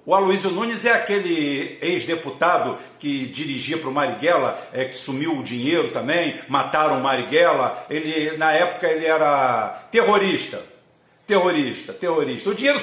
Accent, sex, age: Brazilian, male, 50-69